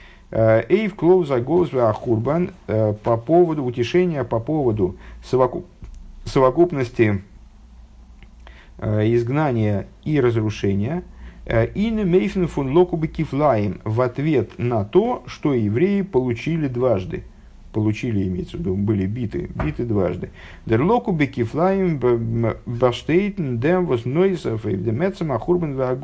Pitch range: 105-155 Hz